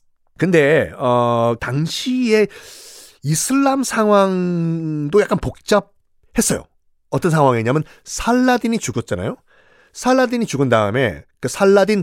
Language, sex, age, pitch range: Korean, male, 40-59, 125-205 Hz